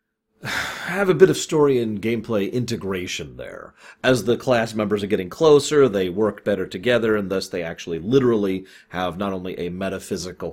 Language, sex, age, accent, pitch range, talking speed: English, male, 30-49, American, 90-125 Hz, 170 wpm